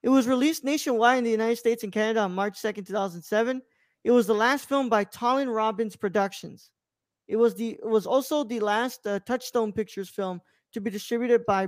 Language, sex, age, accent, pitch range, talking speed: English, male, 20-39, American, 200-255 Hz, 200 wpm